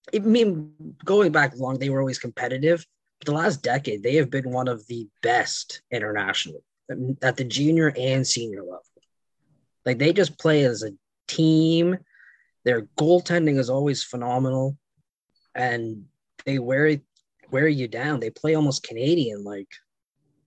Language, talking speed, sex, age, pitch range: English, 145 wpm, male, 20-39, 120-150 Hz